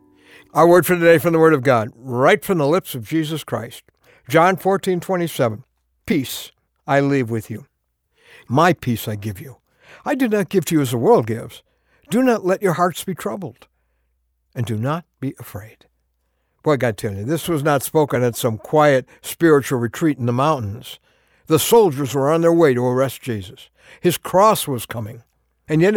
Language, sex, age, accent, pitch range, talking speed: English, male, 60-79, American, 120-205 Hz, 190 wpm